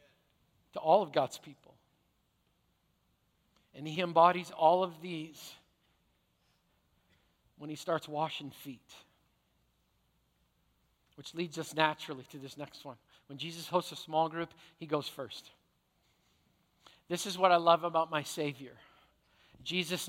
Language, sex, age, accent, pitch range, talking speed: English, male, 50-69, American, 150-175 Hz, 125 wpm